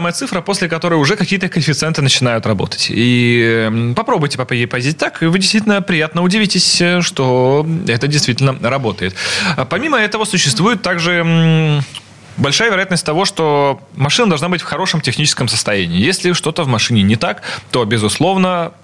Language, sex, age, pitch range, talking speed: Russian, male, 20-39, 115-165 Hz, 150 wpm